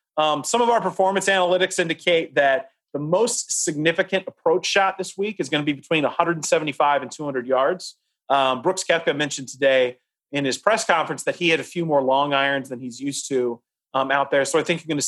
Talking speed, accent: 215 wpm, American